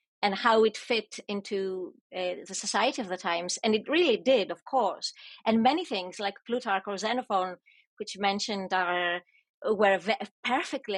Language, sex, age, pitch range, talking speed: English, female, 30-49, 200-270 Hz, 160 wpm